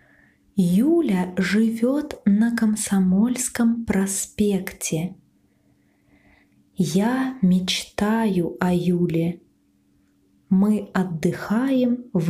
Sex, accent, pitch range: female, native, 165-220 Hz